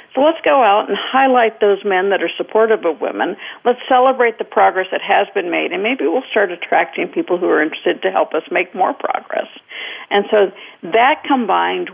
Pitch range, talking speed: 195-270 Hz, 200 wpm